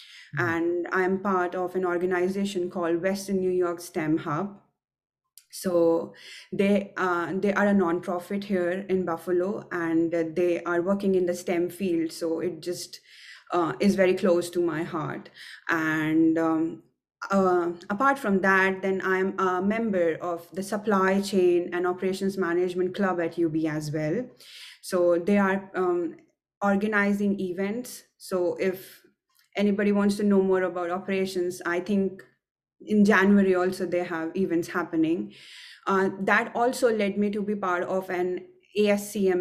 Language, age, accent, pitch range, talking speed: English, 20-39, Indian, 175-200 Hz, 145 wpm